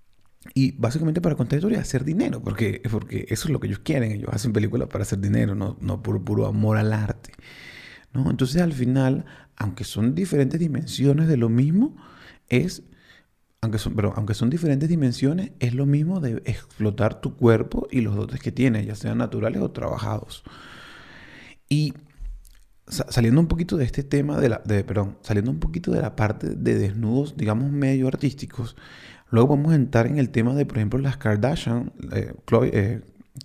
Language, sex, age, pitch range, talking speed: Spanish, male, 30-49, 110-140 Hz, 185 wpm